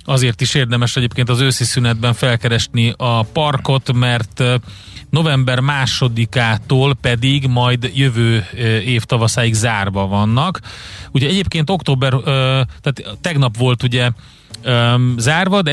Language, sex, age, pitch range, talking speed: Hungarian, male, 30-49, 110-135 Hz, 110 wpm